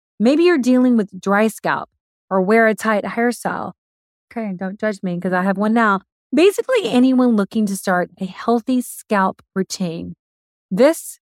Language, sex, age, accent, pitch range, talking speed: English, female, 30-49, American, 190-245 Hz, 160 wpm